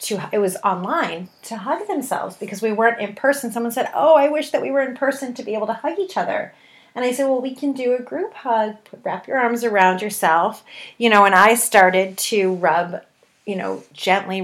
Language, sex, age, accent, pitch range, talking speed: English, female, 30-49, American, 185-245 Hz, 225 wpm